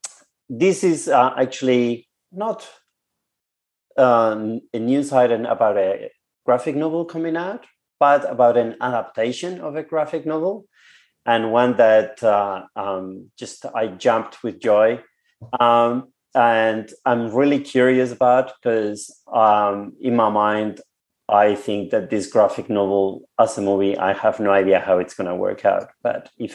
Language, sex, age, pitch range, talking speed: English, male, 30-49, 115-145 Hz, 145 wpm